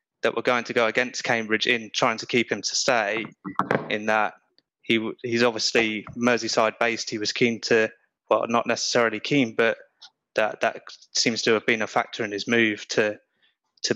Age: 20-39